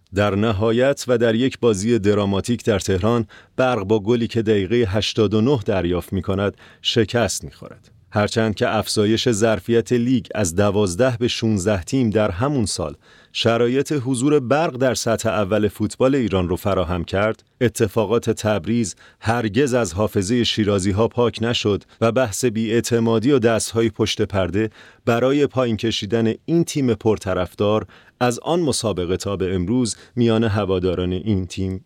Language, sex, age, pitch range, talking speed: English, male, 40-59, 110-130 Hz, 145 wpm